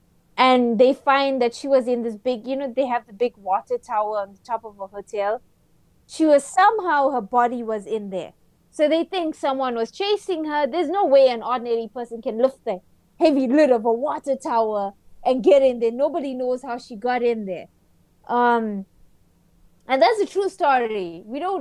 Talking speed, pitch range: 200 wpm, 225-285 Hz